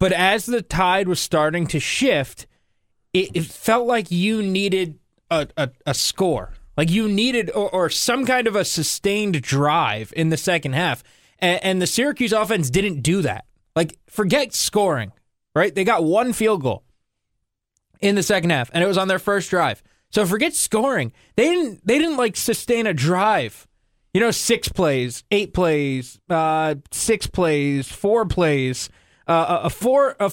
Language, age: English, 20-39